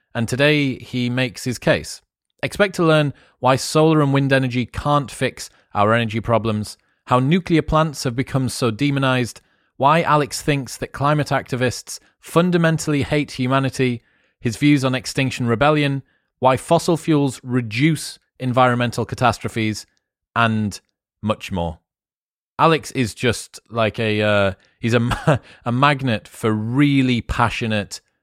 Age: 30-49